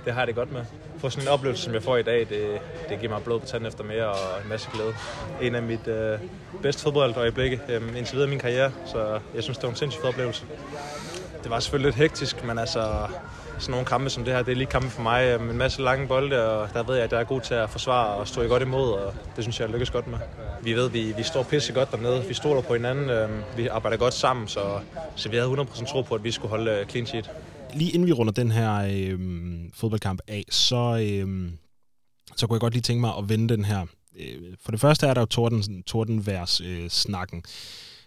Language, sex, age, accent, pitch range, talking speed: Danish, male, 20-39, native, 105-125 Hz, 250 wpm